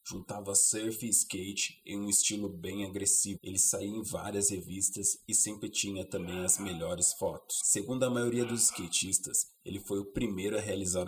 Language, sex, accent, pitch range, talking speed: Portuguese, male, Brazilian, 90-105 Hz, 175 wpm